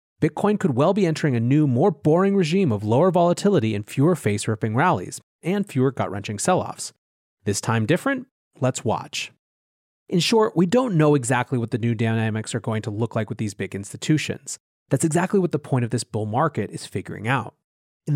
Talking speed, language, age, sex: 200 wpm, English, 30-49, male